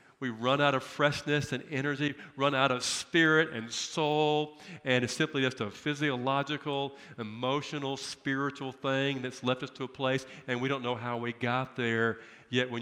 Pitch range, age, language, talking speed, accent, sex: 110-140 Hz, 50-69, English, 180 wpm, American, male